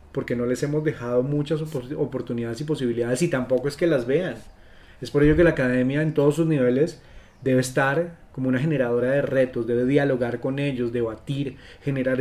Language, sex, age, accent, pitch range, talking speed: Spanish, male, 30-49, Colombian, 120-145 Hz, 185 wpm